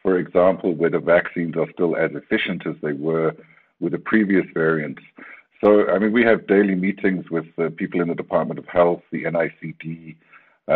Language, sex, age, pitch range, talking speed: English, male, 60-79, 80-95 Hz, 190 wpm